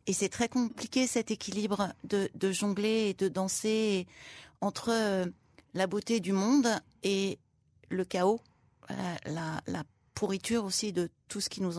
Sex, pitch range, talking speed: female, 175-215 Hz, 150 wpm